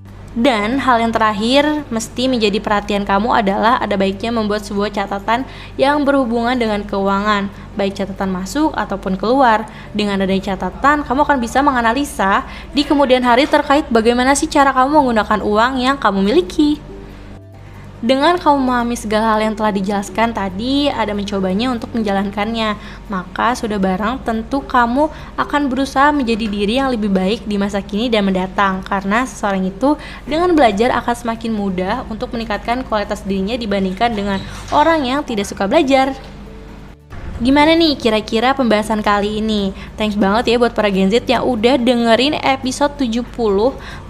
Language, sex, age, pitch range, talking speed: Indonesian, female, 20-39, 205-270 Hz, 150 wpm